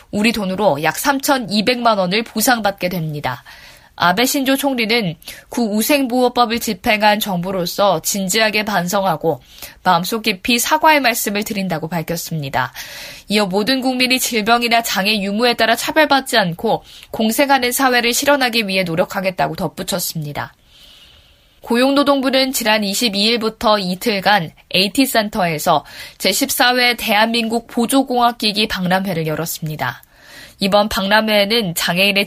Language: Korean